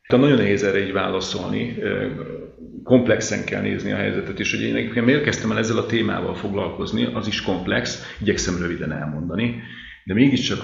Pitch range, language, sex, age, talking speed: 95-115 Hz, Hungarian, male, 40-59, 165 wpm